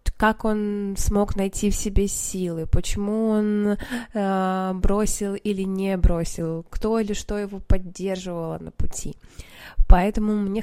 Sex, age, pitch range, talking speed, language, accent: female, 20-39, 185-210 Hz, 125 wpm, Russian, native